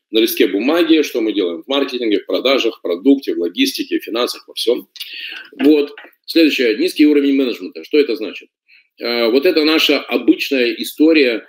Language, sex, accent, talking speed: Russian, male, native, 170 wpm